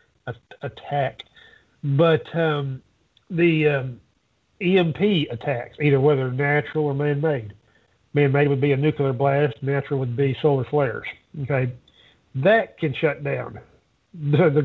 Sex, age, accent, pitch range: male, 50-69, American, 130-155 Hz